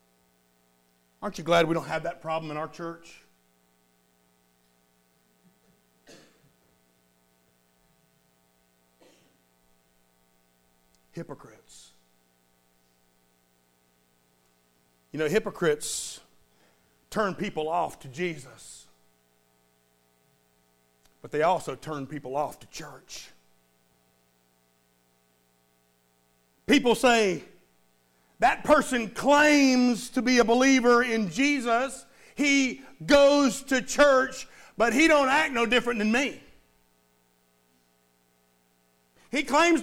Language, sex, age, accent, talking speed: English, male, 50-69, American, 80 wpm